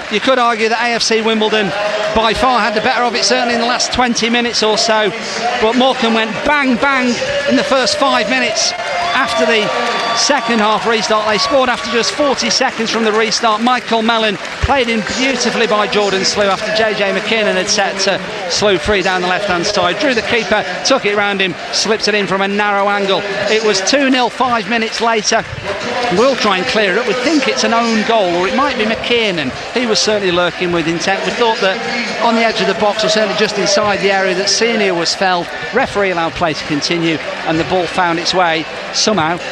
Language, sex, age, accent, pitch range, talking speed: English, male, 40-59, British, 195-240 Hz, 215 wpm